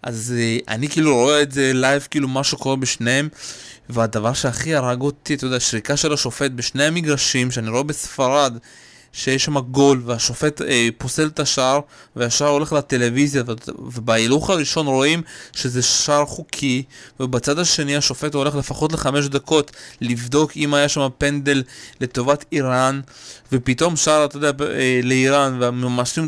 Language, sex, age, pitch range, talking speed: Hebrew, male, 20-39, 130-155 Hz, 145 wpm